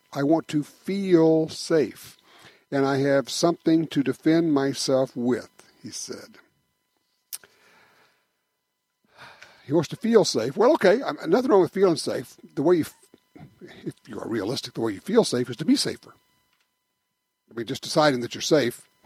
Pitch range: 125-170 Hz